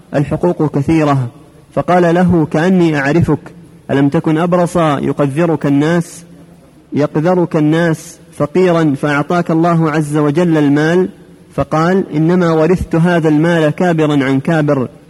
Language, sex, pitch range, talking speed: Arabic, male, 150-170 Hz, 105 wpm